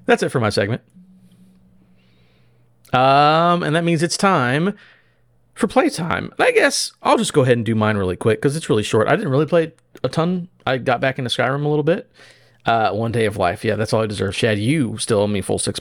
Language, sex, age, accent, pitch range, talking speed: English, male, 30-49, American, 110-150 Hz, 225 wpm